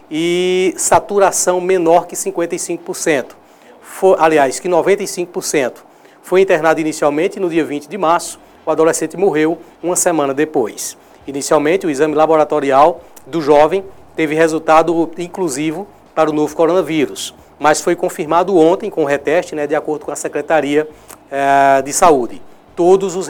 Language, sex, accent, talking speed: Portuguese, male, Brazilian, 130 wpm